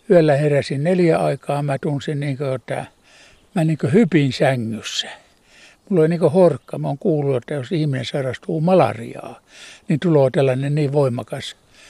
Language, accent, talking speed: Finnish, native, 155 wpm